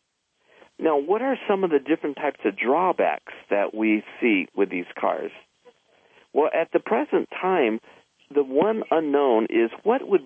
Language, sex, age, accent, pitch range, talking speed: English, male, 50-69, American, 110-165 Hz, 160 wpm